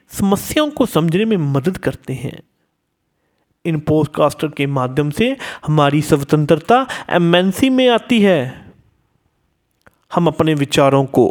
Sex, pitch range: male, 150-230 Hz